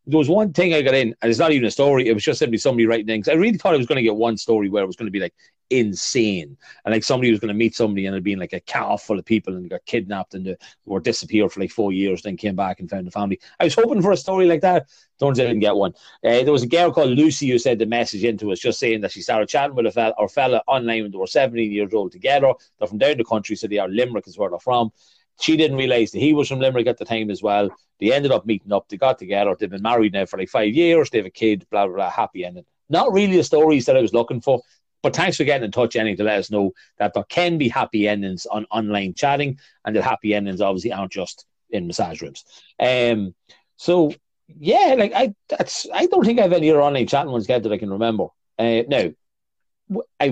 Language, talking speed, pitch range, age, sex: English, 280 wpm, 105-145 Hz, 30-49, male